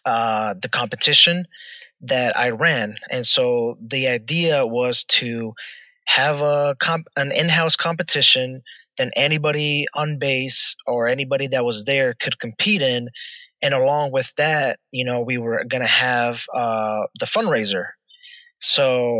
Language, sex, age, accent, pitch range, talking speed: English, male, 20-39, American, 125-155 Hz, 140 wpm